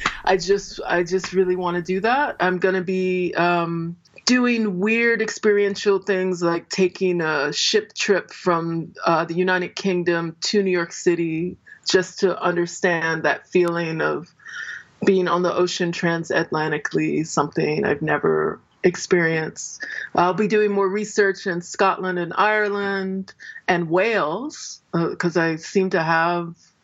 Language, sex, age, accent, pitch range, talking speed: English, female, 30-49, American, 170-200 Hz, 145 wpm